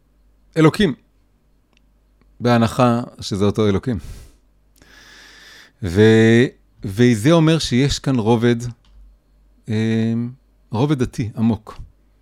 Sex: male